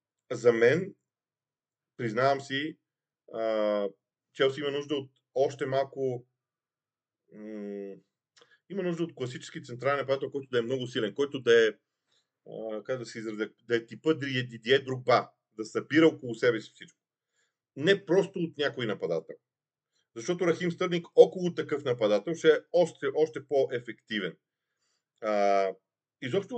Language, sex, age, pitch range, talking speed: Bulgarian, male, 40-59, 130-170 Hz, 130 wpm